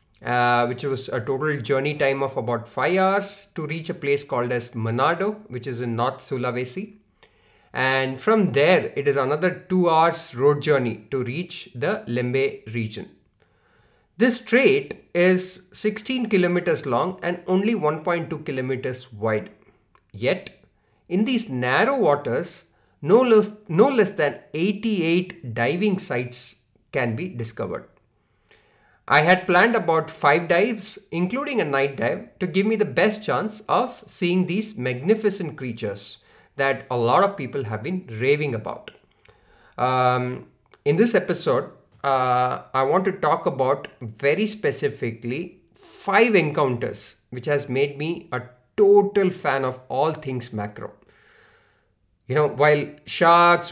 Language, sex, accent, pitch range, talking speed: English, male, Indian, 125-185 Hz, 135 wpm